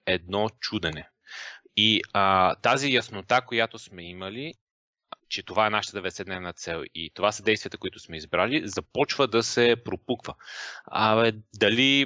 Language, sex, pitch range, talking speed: Bulgarian, male, 95-125 Hz, 145 wpm